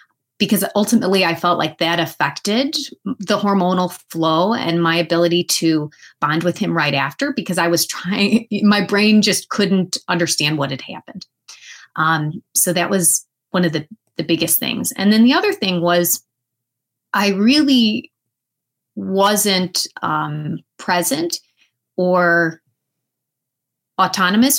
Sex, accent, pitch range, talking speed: female, American, 165-205 Hz, 130 wpm